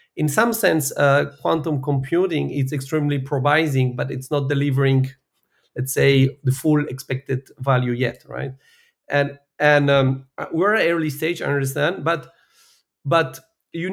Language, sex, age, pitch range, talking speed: English, male, 40-59, 135-170 Hz, 145 wpm